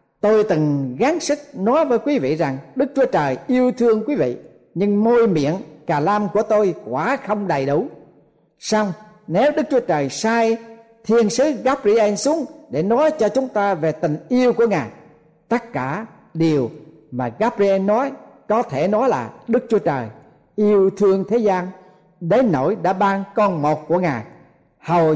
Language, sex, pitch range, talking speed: Vietnamese, male, 160-230 Hz, 175 wpm